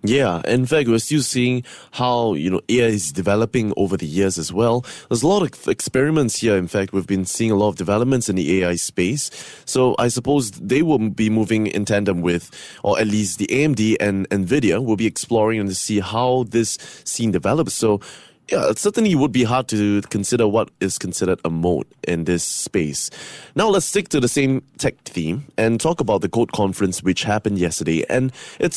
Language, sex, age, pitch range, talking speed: English, male, 20-39, 100-125 Hz, 205 wpm